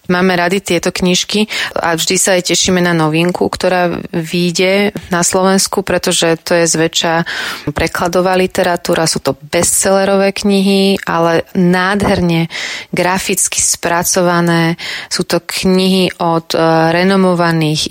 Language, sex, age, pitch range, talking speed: Slovak, female, 30-49, 165-185 Hz, 115 wpm